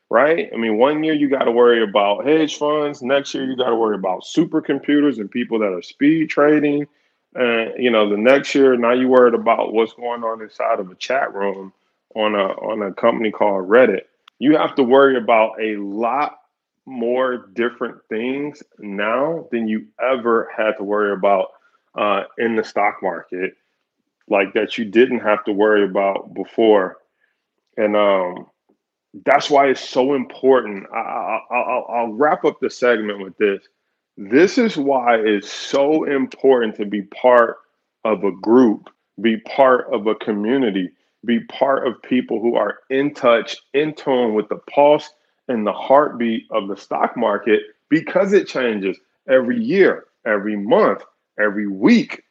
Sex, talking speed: male, 165 wpm